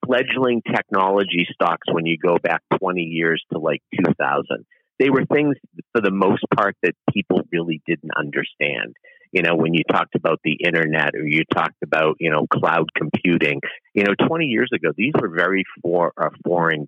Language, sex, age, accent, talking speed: English, male, 50-69, American, 180 wpm